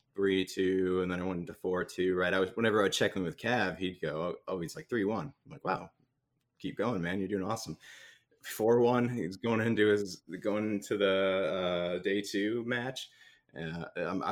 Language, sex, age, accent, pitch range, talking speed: English, male, 20-39, American, 85-105 Hz, 205 wpm